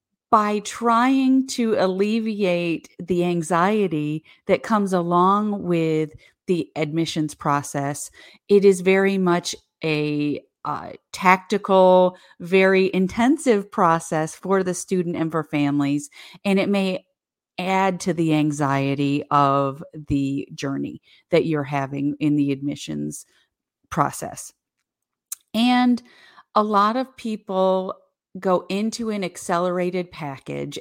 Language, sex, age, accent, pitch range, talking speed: English, female, 40-59, American, 155-205 Hz, 110 wpm